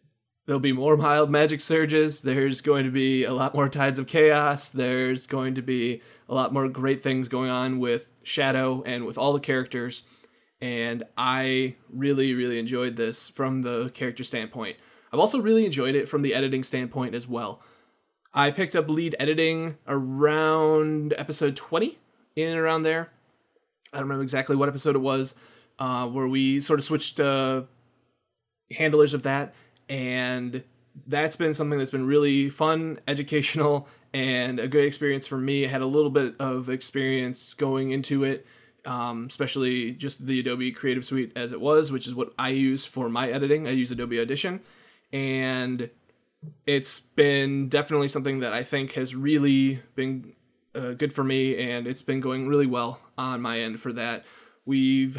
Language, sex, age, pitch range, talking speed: English, male, 20-39, 125-145 Hz, 175 wpm